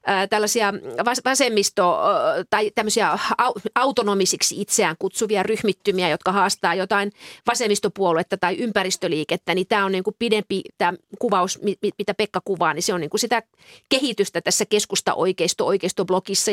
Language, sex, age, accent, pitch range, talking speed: Finnish, female, 30-49, native, 185-235 Hz, 100 wpm